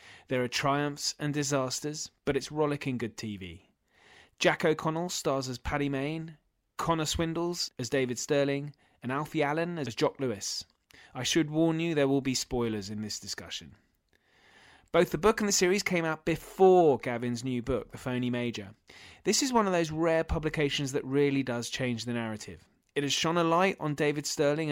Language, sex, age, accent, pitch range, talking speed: English, male, 30-49, British, 125-155 Hz, 180 wpm